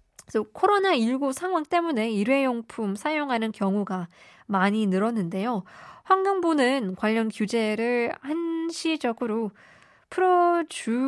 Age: 20-39